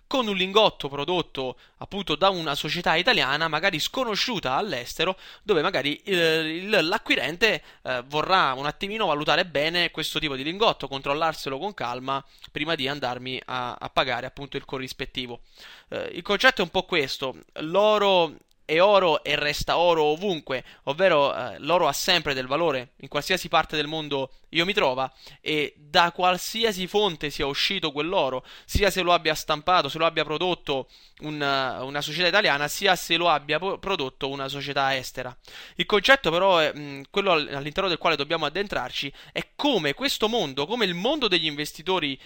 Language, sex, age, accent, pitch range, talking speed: Italian, male, 20-39, native, 145-190 Hz, 165 wpm